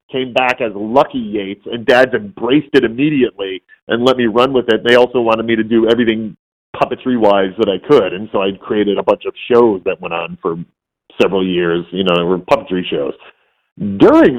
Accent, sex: American, male